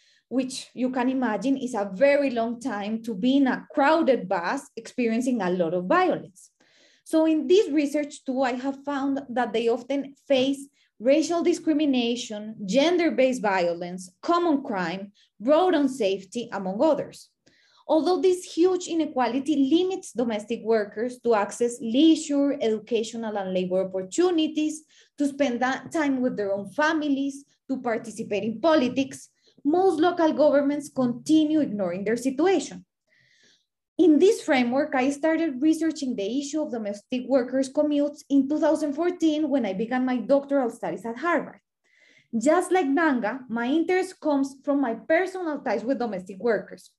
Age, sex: 20-39, female